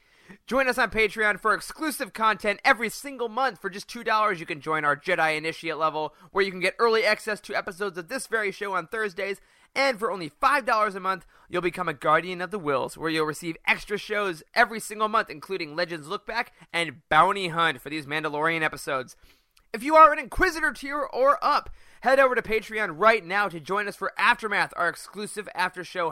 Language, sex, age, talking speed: English, male, 20-39, 200 wpm